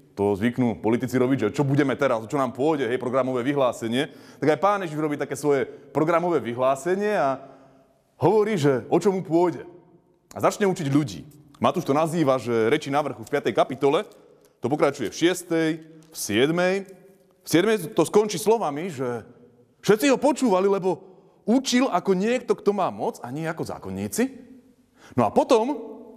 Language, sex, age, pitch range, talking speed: Slovak, male, 30-49, 140-225 Hz, 165 wpm